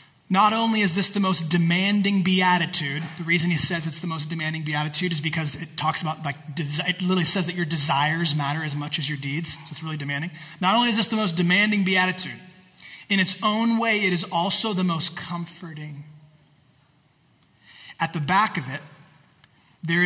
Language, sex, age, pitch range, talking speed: English, male, 30-49, 160-195 Hz, 190 wpm